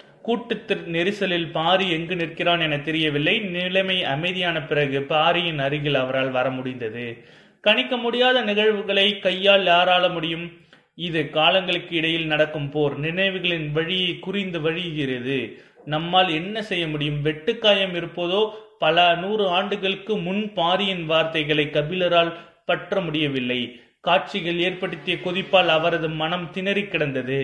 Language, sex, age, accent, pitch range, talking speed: Tamil, male, 30-49, native, 155-195 Hz, 110 wpm